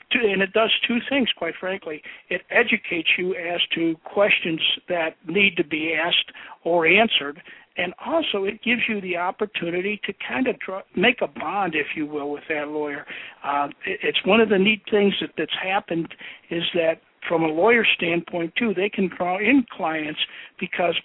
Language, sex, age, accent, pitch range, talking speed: English, male, 60-79, American, 165-200 Hz, 175 wpm